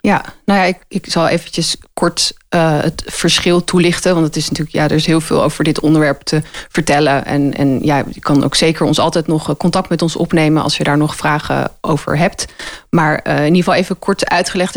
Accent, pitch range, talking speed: Dutch, 155-175 Hz, 230 wpm